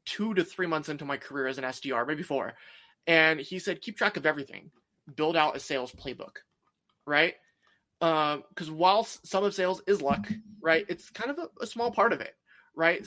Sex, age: male, 20-39